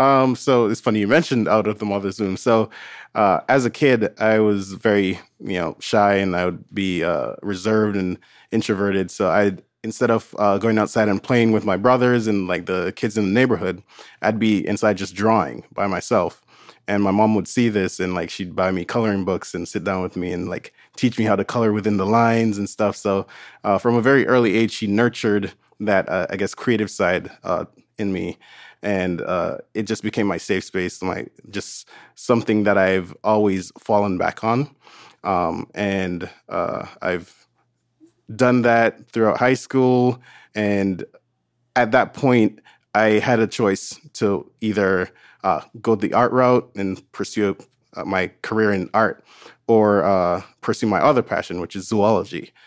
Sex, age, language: male, 20-39, English